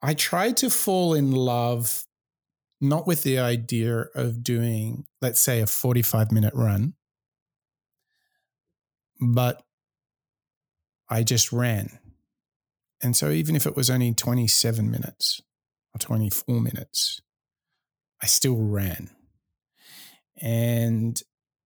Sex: male